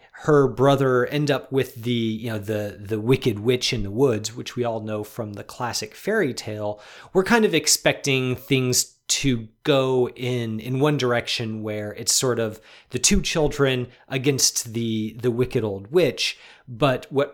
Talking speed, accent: 175 wpm, American